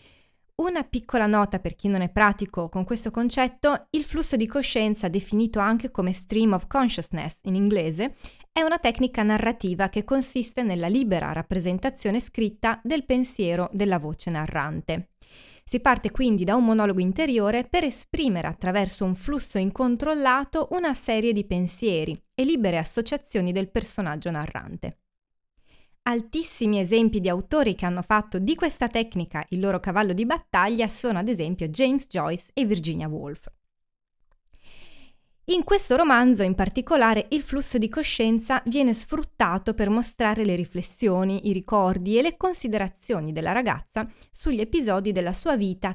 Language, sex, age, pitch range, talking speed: Italian, female, 20-39, 185-255 Hz, 145 wpm